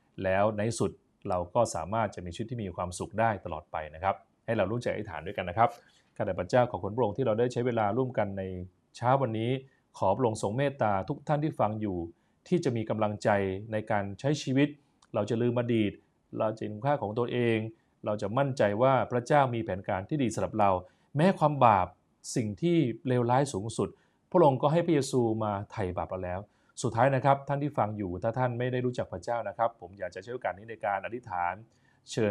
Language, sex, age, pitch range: Thai, male, 20-39, 100-130 Hz